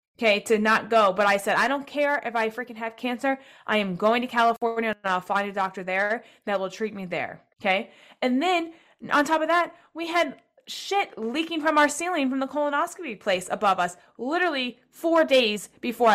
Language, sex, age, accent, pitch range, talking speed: English, female, 20-39, American, 205-270 Hz, 205 wpm